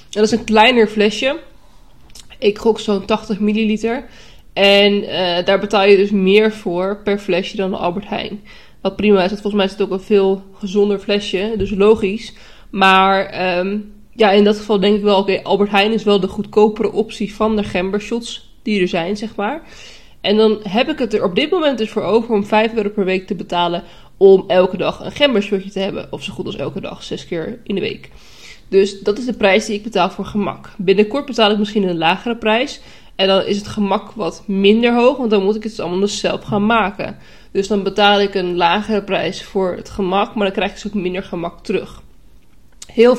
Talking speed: 215 wpm